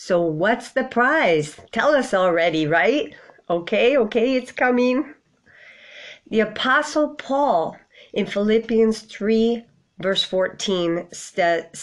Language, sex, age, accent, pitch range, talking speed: English, female, 50-69, American, 175-225 Hz, 100 wpm